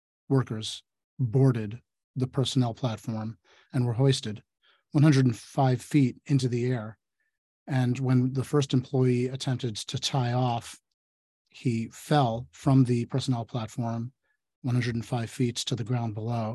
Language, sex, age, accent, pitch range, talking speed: English, male, 40-59, American, 120-140 Hz, 125 wpm